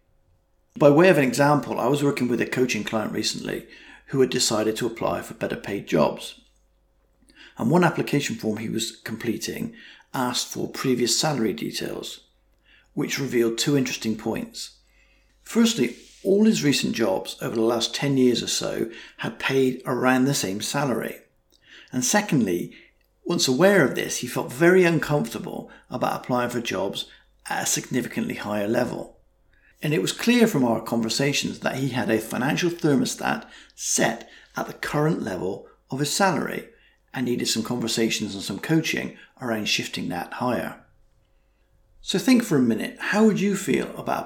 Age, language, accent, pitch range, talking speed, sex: 50-69, English, British, 115-145 Hz, 160 wpm, male